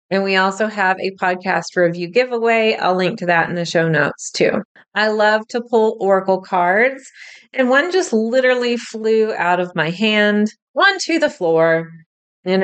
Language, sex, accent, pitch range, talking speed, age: English, female, American, 175-220 Hz, 175 wpm, 30-49